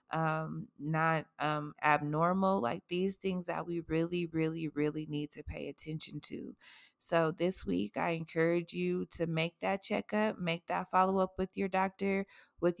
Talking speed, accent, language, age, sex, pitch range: 160 wpm, American, English, 20-39, female, 160-180 Hz